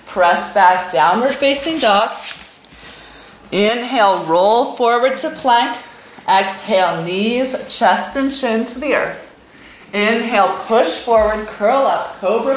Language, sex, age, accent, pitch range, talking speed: English, female, 30-49, American, 185-245 Hz, 115 wpm